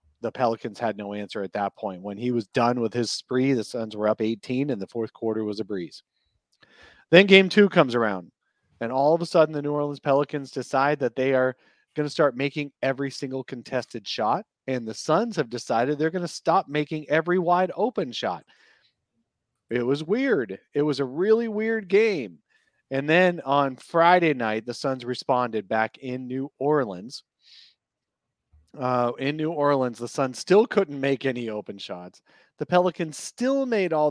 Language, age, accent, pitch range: English, 40-59, American, 115-145 Hz